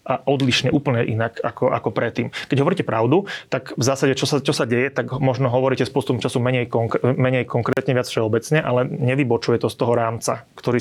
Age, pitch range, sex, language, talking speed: 30-49, 115-125 Hz, male, Slovak, 200 wpm